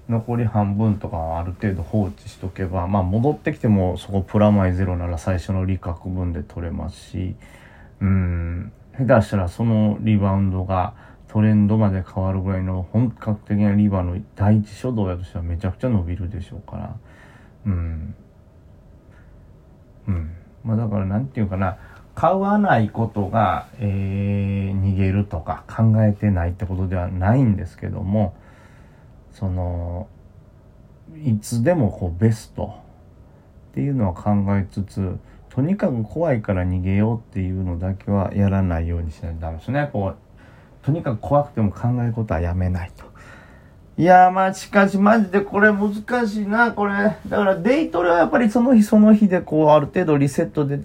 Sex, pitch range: male, 95-125 Hz